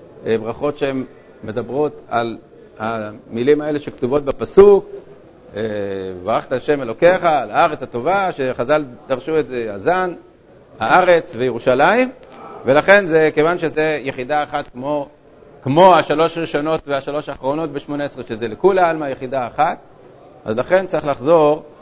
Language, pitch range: Hebrew, 130-165 Hz